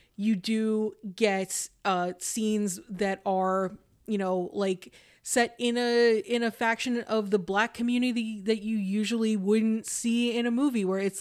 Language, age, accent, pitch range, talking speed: English, 20-39, American, 190-220 Hz, 160 wpm